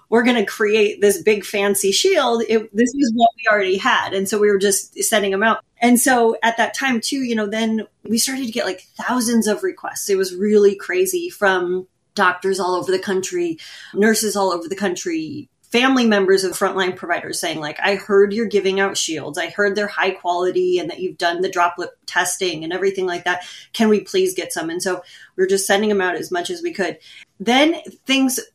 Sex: female